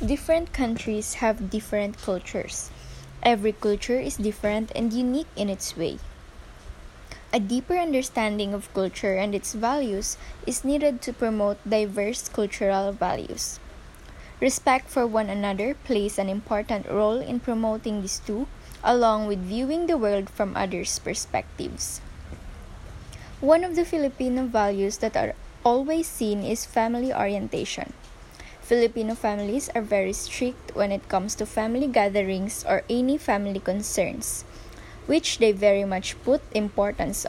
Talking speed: 130 wpm